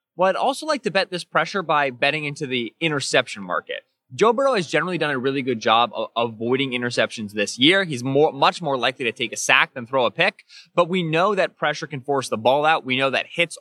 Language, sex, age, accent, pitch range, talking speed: English, male, 20-39, American, 120-155 Hz, 240 wpm